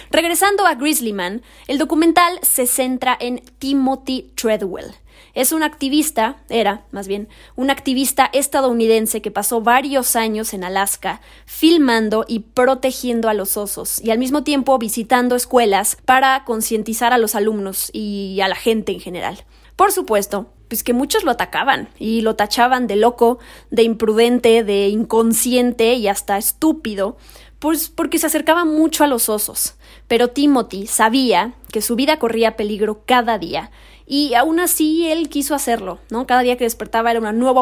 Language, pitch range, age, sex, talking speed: Spanish, 215-265 Hz, 20-39, female, 160 wpm